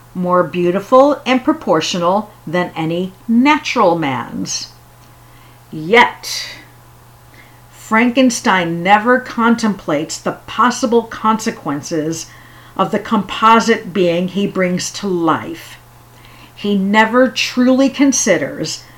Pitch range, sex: 165-235 Hz, female